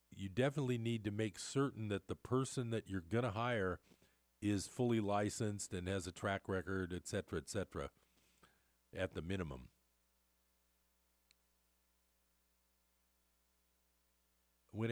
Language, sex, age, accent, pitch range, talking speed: English, male, 50-69, American, 90-125 Hz, 120 wpm